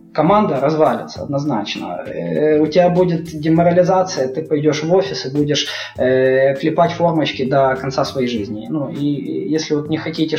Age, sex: 20-39, male